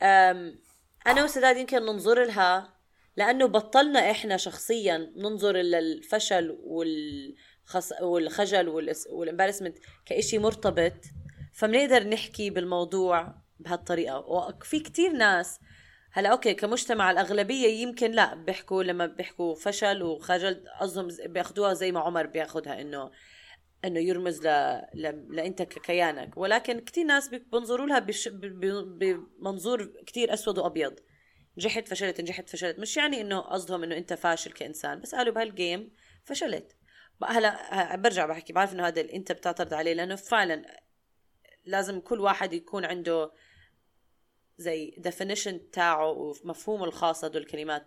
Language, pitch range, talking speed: Arabic, 170-215 Hz, 125 wpm